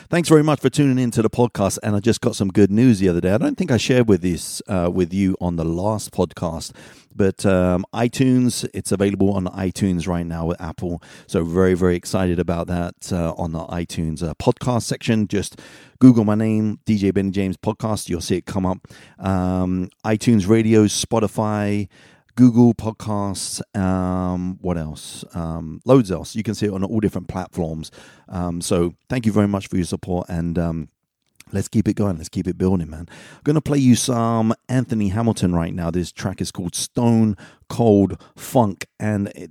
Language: English